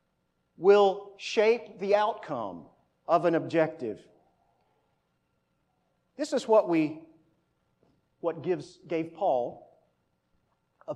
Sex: male